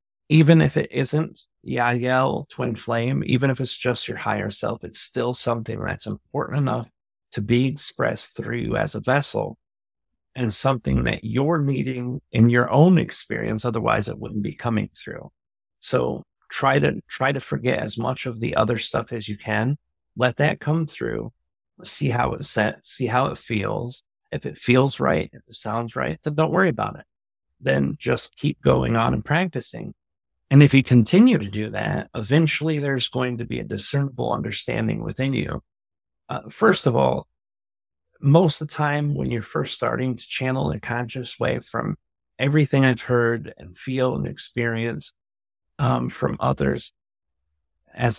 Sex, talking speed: male, 170 wpm